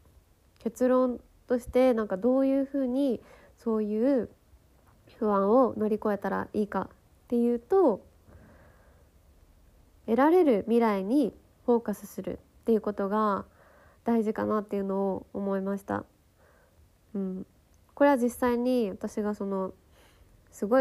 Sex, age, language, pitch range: female, 20-39, Japanese, 180-235 Hz